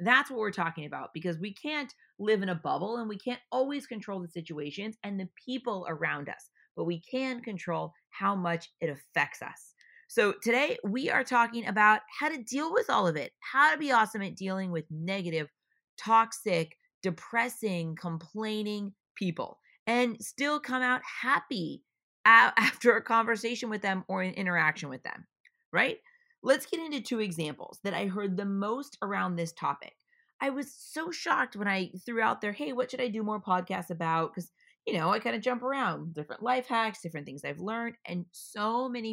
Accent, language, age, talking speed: American, English, 30-49, 185 wpm